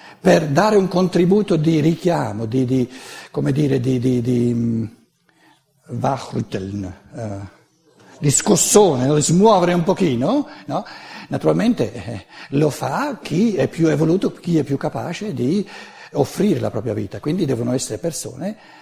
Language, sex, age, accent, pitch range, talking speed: Italian, male, 60-79, native, 125-175 Hz, 135 wpm